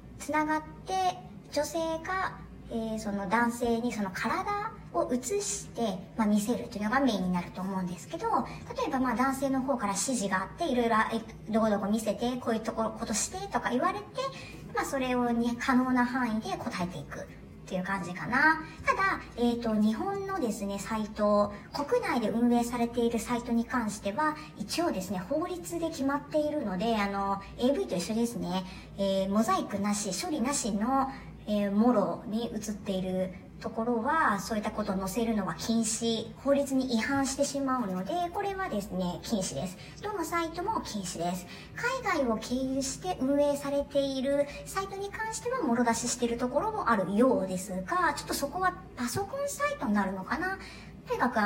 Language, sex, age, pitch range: Japanese, male, 40-59, 205-280 Hz